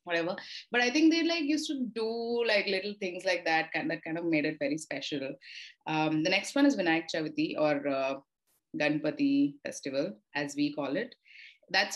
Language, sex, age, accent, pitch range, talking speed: English, female, 30-49, Indian, 155-195 Hz, 195 wpm